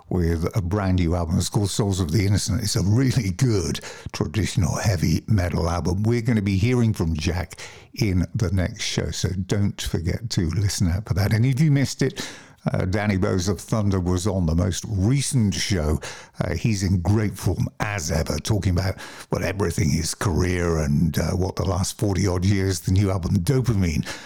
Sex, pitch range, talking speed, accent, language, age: male, 90-115 Hz, 195 wpm, British, English, 60-79